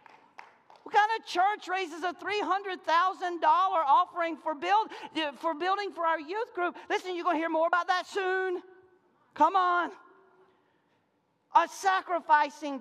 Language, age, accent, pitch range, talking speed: English, 40-59, American, 320-405 Hz, 130 wpm